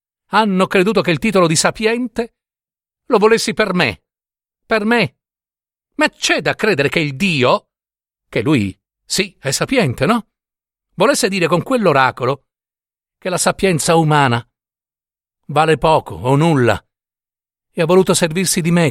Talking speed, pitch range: 140 wpm, 135-195 Hz